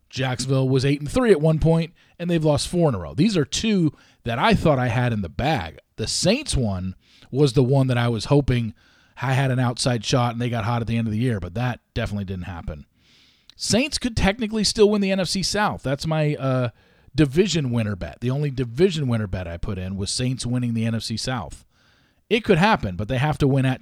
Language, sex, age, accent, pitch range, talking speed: English, male, 40-59, American, 110-145 Hz, 235 wpm